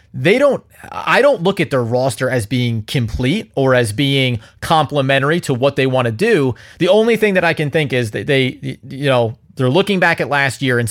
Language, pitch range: English, 125-170 Hz